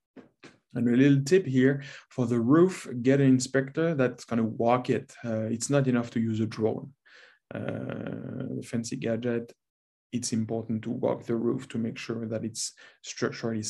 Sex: male